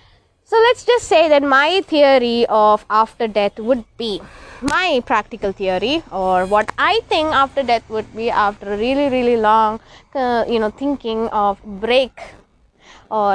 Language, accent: English, Indian